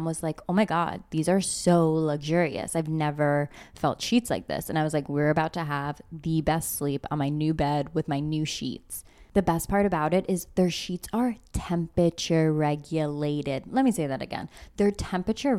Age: 20-39